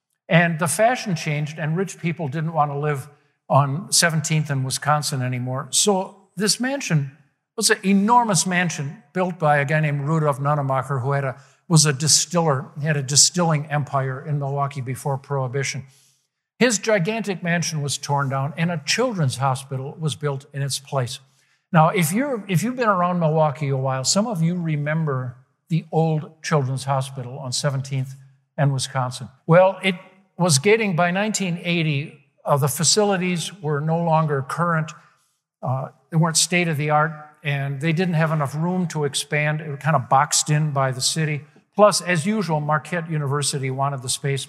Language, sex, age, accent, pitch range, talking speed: English, male, 60-79, American, 140-170 Hz, 165 wpm